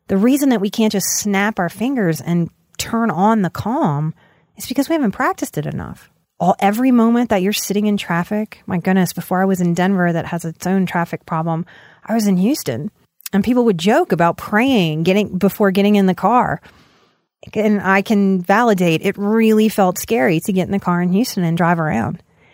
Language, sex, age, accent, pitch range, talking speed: English, female, 30-49, American, 175-215 Hz, 195 wpm